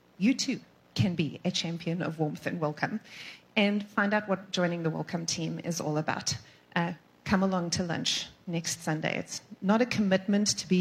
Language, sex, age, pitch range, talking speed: English, female, 30-49, 175-235 Hz, 190 wpm